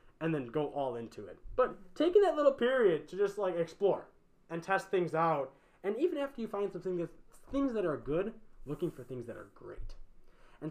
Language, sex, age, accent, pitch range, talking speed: English, male, 20-39, American, 130-190 Hz, 205 wpm